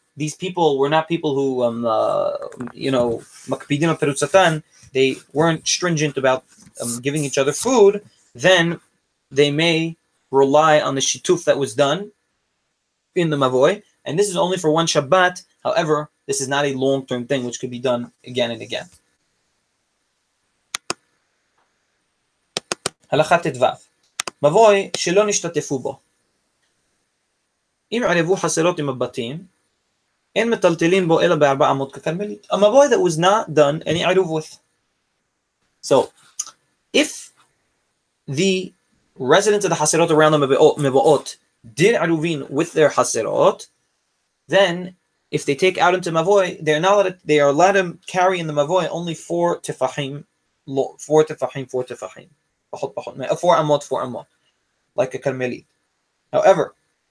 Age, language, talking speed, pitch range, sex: 30-49, English, 115 wpm, 135-180 Hz, male